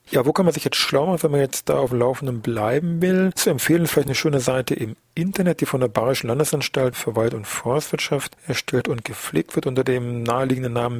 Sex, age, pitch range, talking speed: male, 40-59, 115-135 Hz, 225 wpm